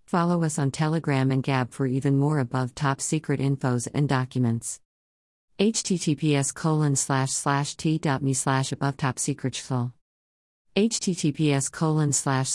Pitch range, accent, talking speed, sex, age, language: 130-150 Hz, American, 135 wpm, female, 50-69, English